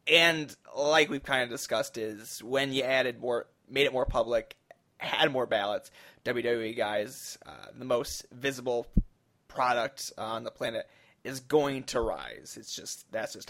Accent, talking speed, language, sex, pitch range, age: American, 160 wpm, English, male, 115-140 Hz, 20-39